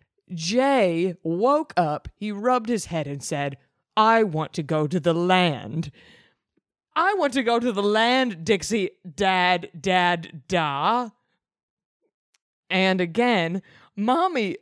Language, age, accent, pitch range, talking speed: English, 20-39, American, 160-225 Hz, 125 wpm